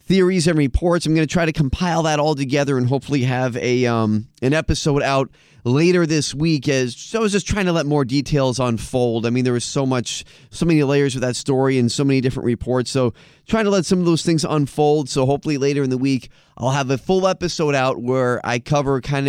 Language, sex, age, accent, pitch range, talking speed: English, male, 30-49, American, 125-150 Hz, 235 wpm